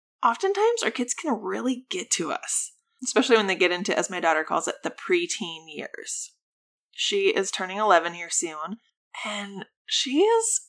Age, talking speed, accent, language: 20-39, 170 wpm, American, English